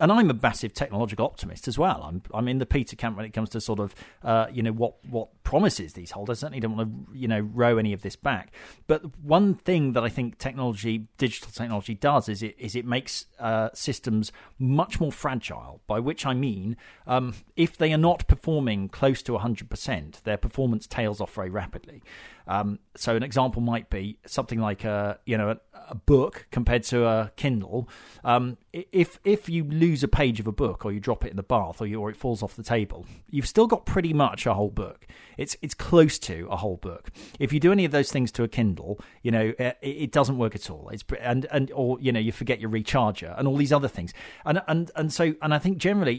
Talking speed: 235 wpm